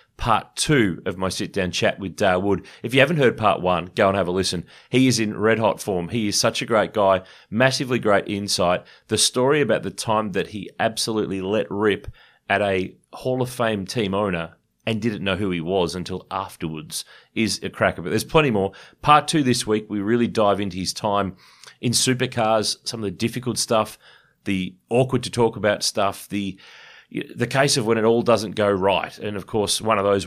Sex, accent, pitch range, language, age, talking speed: male, Australian, 95-120 Hz, English, 30-49, 215 wpm